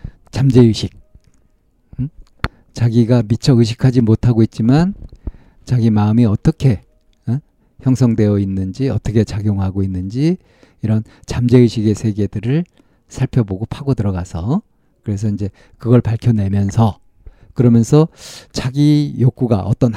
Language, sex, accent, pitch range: Korean, male, native, 100-130 Hz